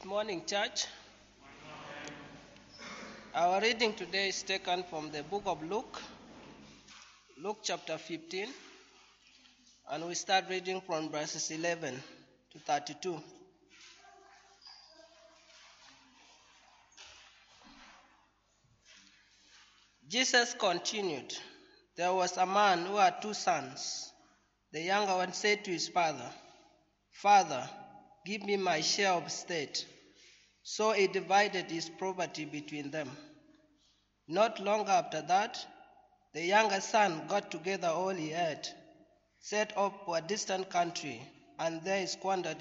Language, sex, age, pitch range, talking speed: English, male, 20-39, 165-225 Hz, 110 wpm